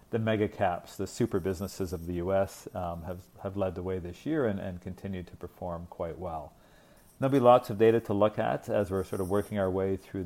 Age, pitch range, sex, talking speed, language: 40-59, 95-105 Hz, male, 240 wpm, English